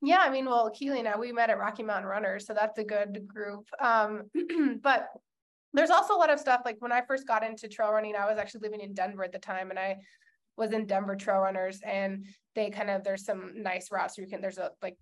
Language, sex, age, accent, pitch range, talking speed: English, female, 20-39, American, 190-240 Hz, 255 wpm